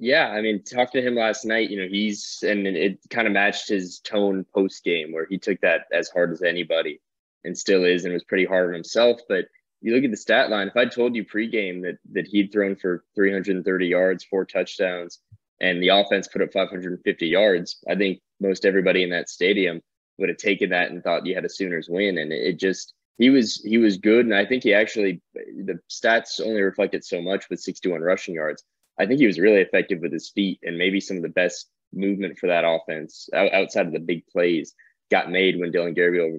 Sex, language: male, English